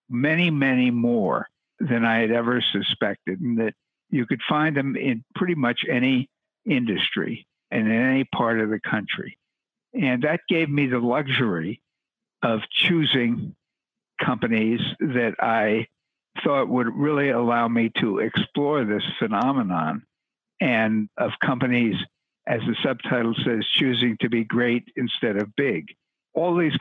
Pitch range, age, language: 115-135 Hz, 60-79, English